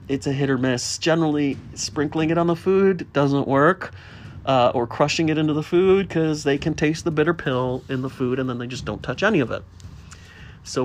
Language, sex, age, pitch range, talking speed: English, male, 40-59, 120-160 Hz, 220 wpm